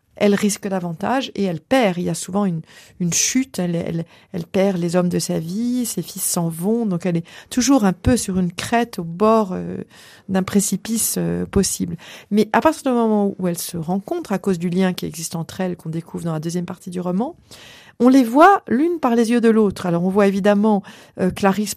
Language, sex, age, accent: French, female, 40-59, French